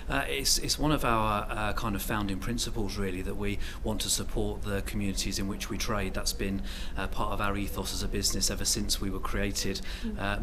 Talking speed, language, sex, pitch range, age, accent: 225 wpm, English, male, 100-110 Hz, 30-49, British